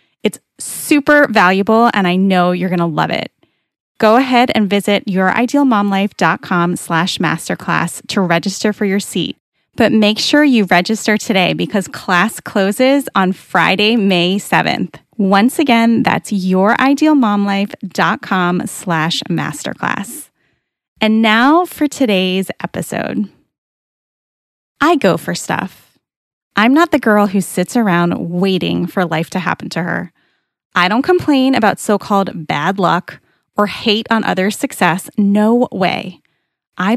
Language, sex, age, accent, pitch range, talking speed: English, female, 20-39, American, 180-225 Hz, 125 wpm